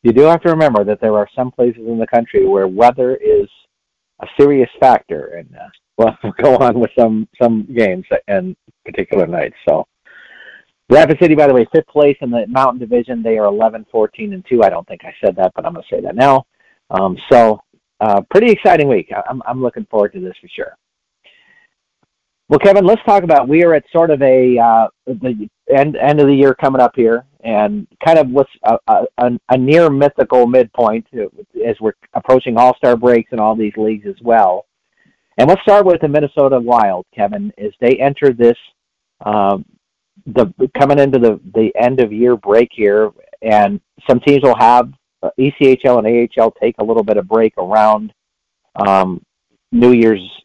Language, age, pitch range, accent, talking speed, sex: English, 50-69, 115-150 Hz, American, 185 wpm, male